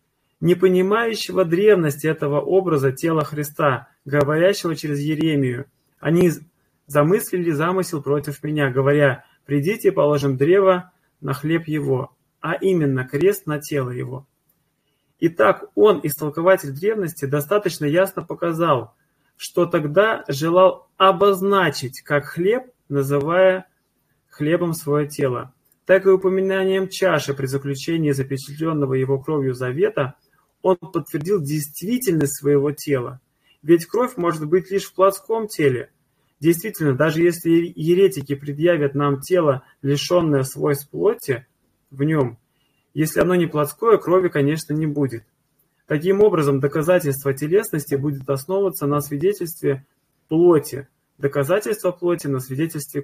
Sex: male